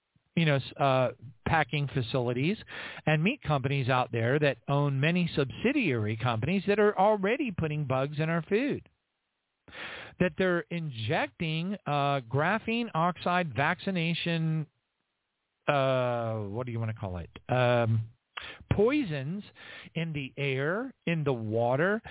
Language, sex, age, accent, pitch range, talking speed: English, male, 50-69, American, 130-175 Hz, 120 wpm